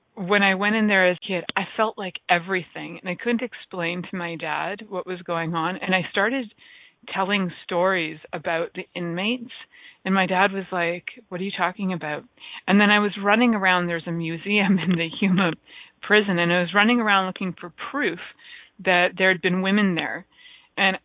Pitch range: 175-205 Hz